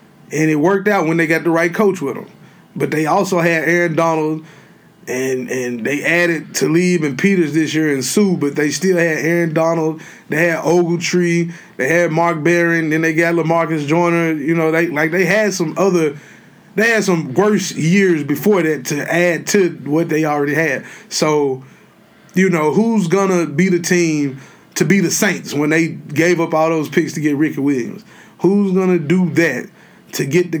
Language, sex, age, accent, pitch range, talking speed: English, male, 20-39, American, 160-195 Hz, 195 wpm